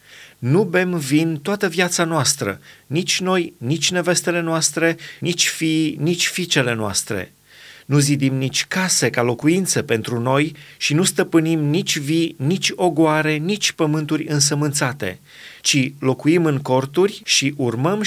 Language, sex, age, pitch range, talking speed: Romanian, male, 30-49, 135-170 Hz, 135 wpm